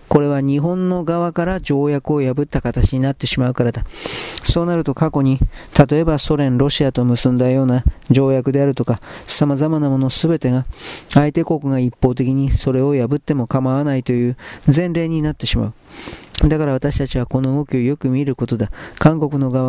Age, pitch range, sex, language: 40-59, 125-145 Hz, male, Japanese